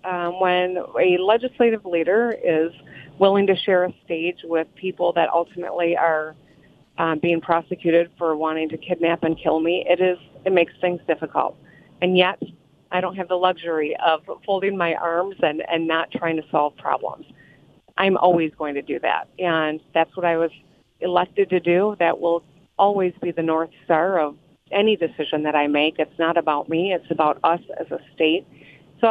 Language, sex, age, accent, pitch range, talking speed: English, female, 40-59, American, 160-190 Hz, 180 wpm